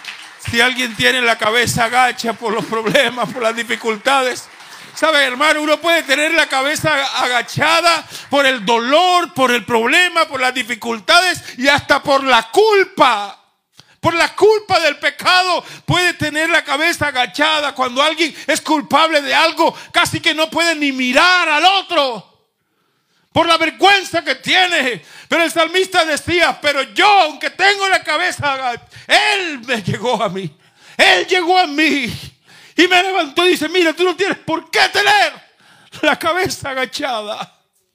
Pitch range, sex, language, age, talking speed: 265-360 Hz, male, Spanish, 50-69, 155 wpm